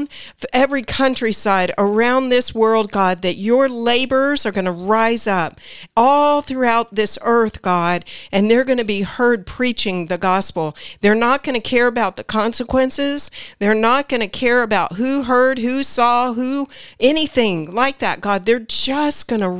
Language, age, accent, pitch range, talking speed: English, 50-69, American, 185-235 Hz, 170 wpm